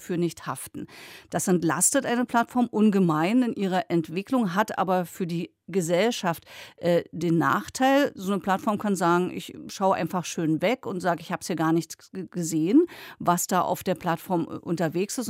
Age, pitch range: 50-69, 170-215 Hz